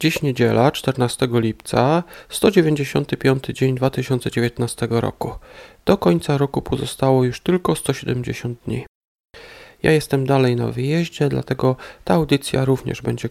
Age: 40-59